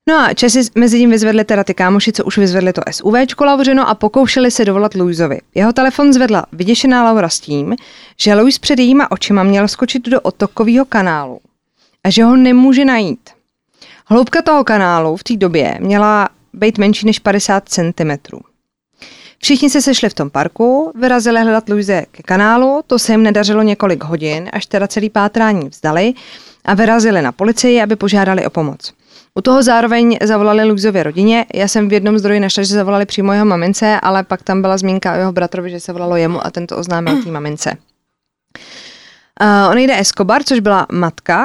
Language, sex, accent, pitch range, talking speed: Czech, female, native, 180-230 Hz, 180 wpm